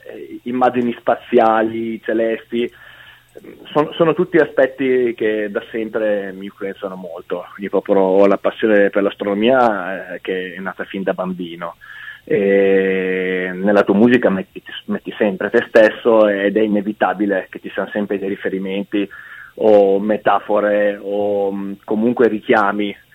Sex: male